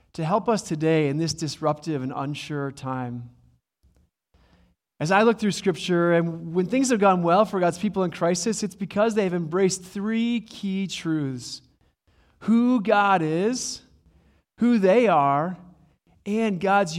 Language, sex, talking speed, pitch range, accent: English, male, 150 wpm, 140-205 Hz, American